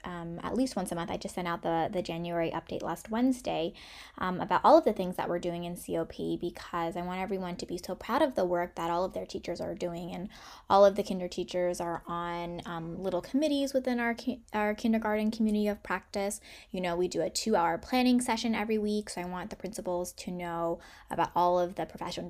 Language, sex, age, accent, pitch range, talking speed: English, female, 10-29, American, 170-210 Hz, 230 wpm